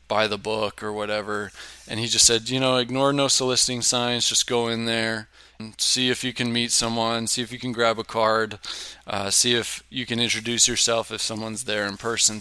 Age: 20-39